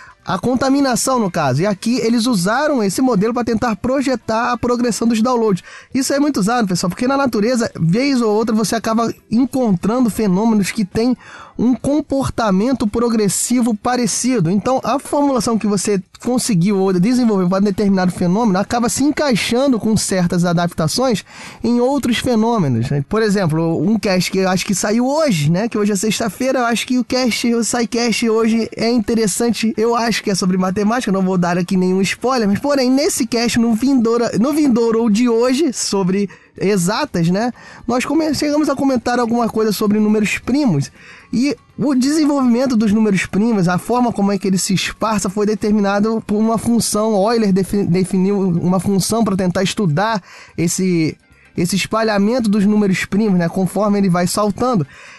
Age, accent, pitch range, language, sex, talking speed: 20-39, Brazilian, 195-245 Hz, Portuguese, male, 170 wpm